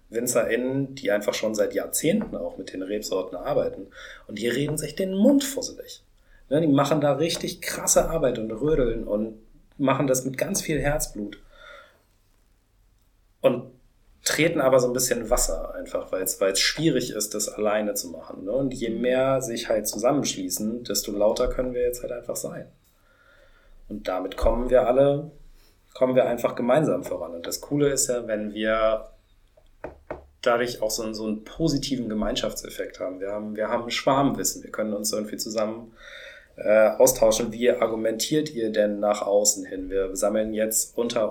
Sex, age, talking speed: male, 40-59, 160 wpm